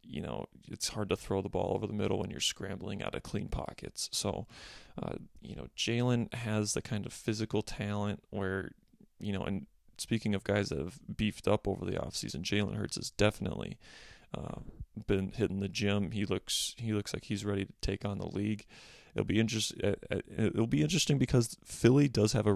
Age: 30-49